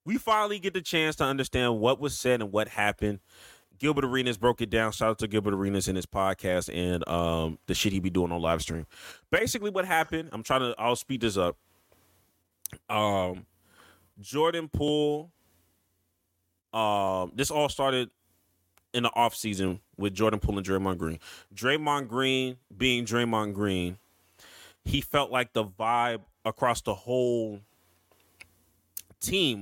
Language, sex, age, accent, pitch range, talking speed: English, male, 20-39, American, 90-120 Hz, 155 wpm